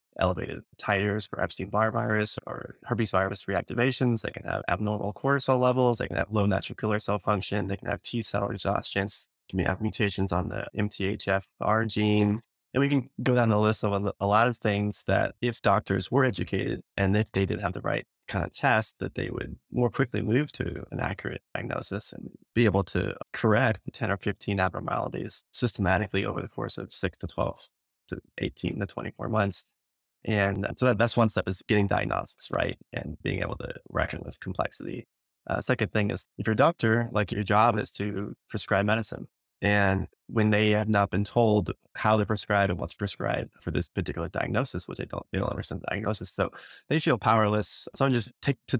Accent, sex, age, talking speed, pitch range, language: American, male, 20-39, 195 wpm, 100-115 Hz, English